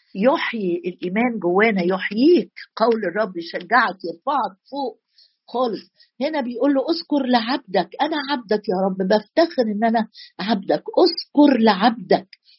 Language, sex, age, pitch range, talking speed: Arabic, female, 50-69, 205-270 Hz, 120 wpm